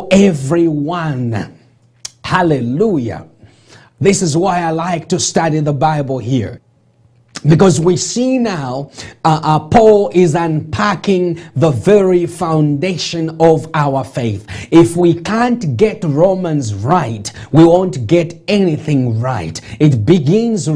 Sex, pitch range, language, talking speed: male, 145-195 Hz, English, 115 wpm